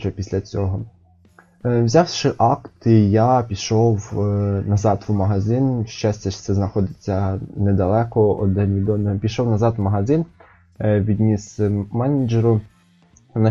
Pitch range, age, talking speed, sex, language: 95-115 Hz, 20-39, 100 wpm, male, Ukrainian